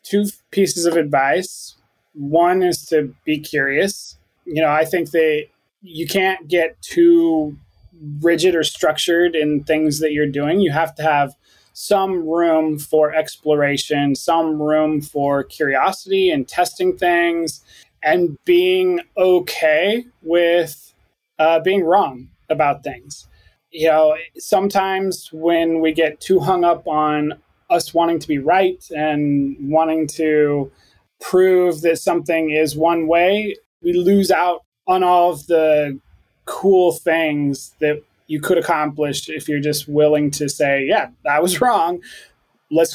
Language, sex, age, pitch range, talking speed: English, male, 20-39, 150-185 Hz, 135 wpm